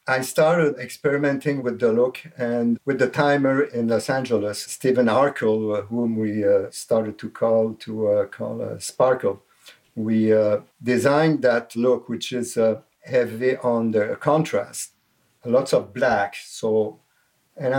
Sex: male